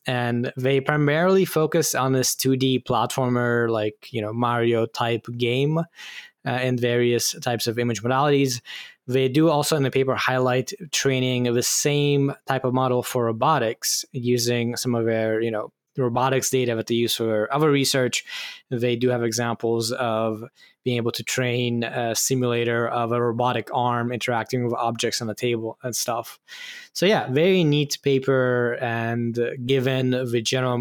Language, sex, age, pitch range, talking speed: English, male, 10-29, 120-140 Hz, 160 wpm